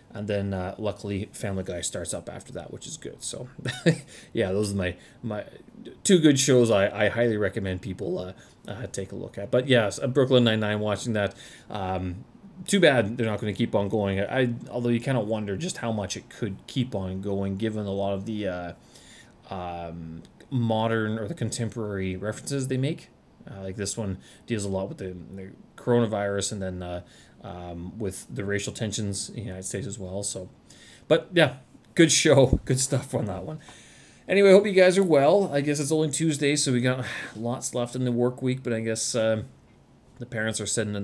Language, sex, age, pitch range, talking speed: English, male, 30-49, 100-130 Hz, 210 wpm